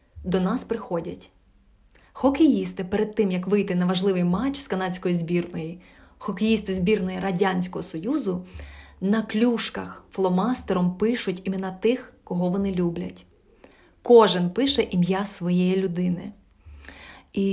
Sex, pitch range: female, 180-210 Hz